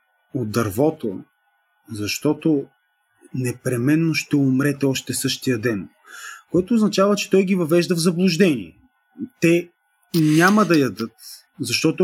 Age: 30-49